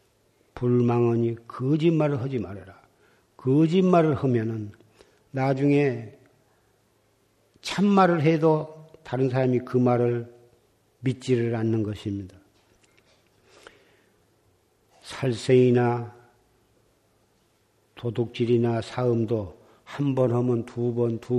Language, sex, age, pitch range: Korean, male, 50-69, 115-135 Hz